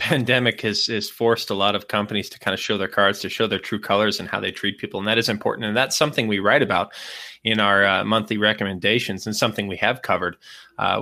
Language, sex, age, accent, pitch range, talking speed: English, male, 20-39, American, 100-125 Hz, 245 wpm